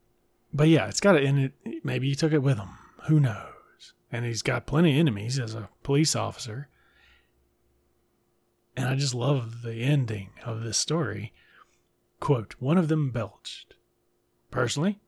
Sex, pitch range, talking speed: male, 115-150 Hz, 160 wpm